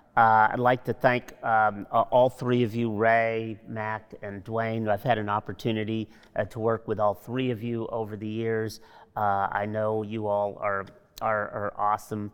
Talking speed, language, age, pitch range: 185 wpm, English, 40-59, 100-115 Hz